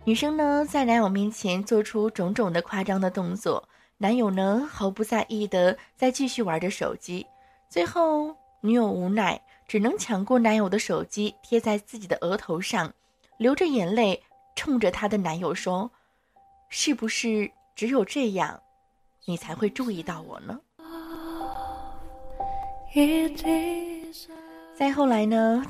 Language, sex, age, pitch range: Chinese, female, 20-39, 200-280 Hz